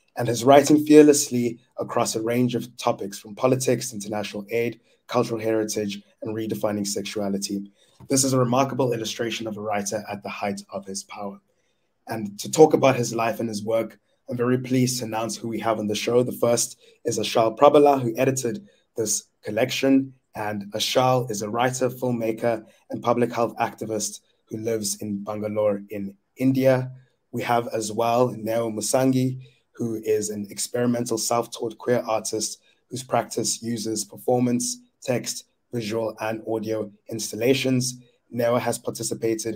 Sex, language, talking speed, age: male, English, 155 wpm, 20-39